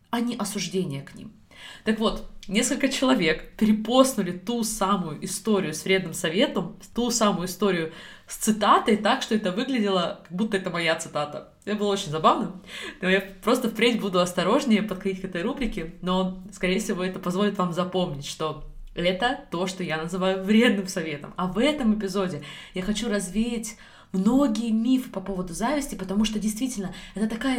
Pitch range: 190-235 Hz